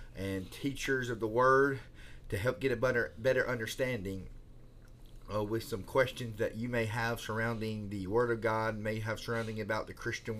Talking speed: 180 wpm